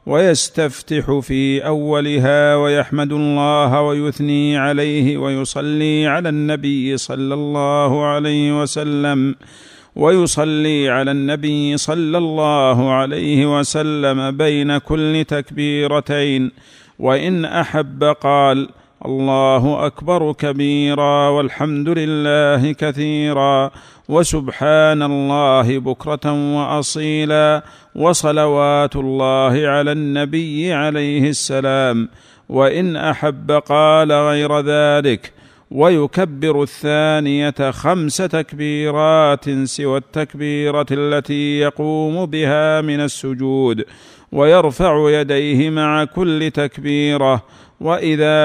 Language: Arabic